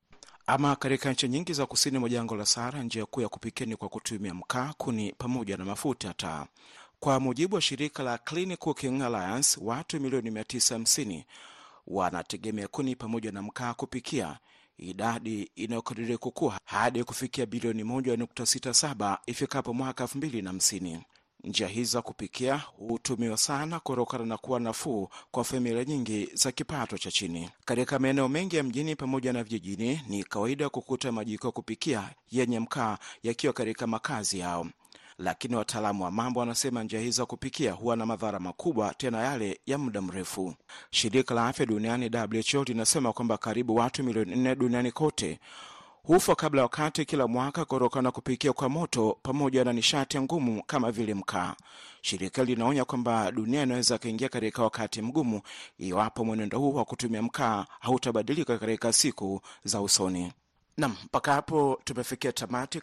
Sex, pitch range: male, 110-130 Hz